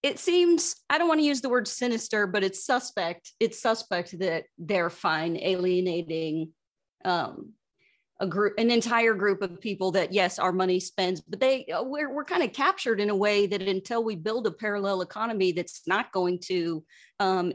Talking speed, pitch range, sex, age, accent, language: 185 wpm, 175-235 Hz, female, 30-49, American, English